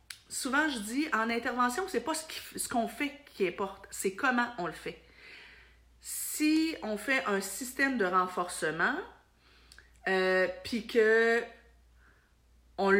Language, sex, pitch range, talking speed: French, female, 170-230 Hz, 135 wpm